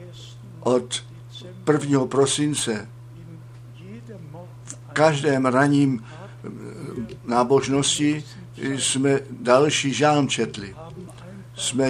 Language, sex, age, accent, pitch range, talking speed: Czech, male, 60-79, native, 120-140 Hz, 60 wpm